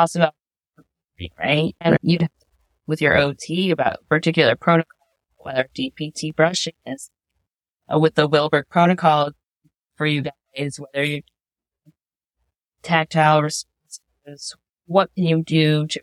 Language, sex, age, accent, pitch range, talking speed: English, female, 30-49, American, 130-165 Hz, 110 wpm